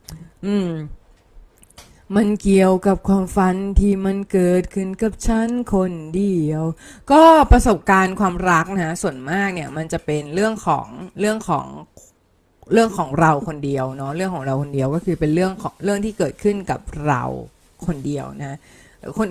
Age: 20-39